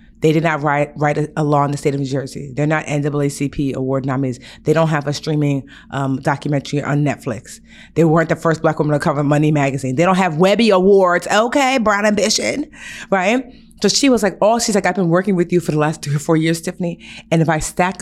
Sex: female